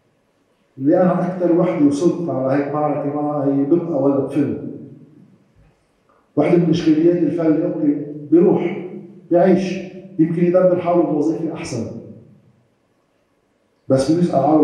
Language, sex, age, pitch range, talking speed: Arabic, male, 50-69, 140-170 Hz, 115 wpm